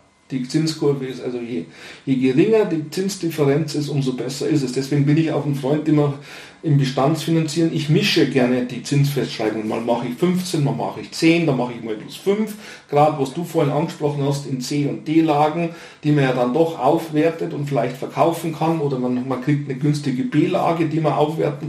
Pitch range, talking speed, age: 140-170 Hz, 200 wpm, 40-59